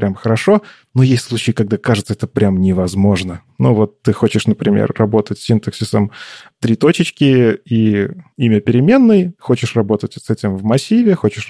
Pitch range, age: 105-135 Hz, 20-39